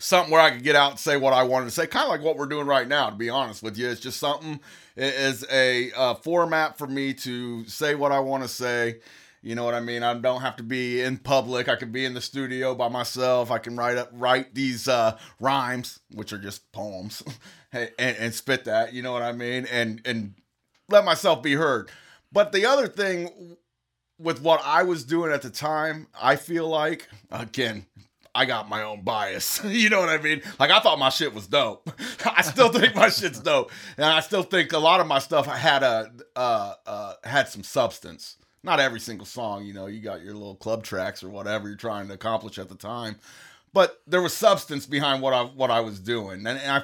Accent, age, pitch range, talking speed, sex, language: American, 30-49, 115-150 Hz, 230 wpm, male, English